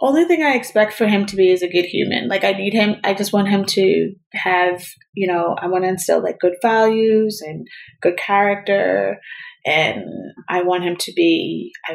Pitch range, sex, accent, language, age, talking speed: 180-260 Hz, female, American, English, 30-49, 205 wpm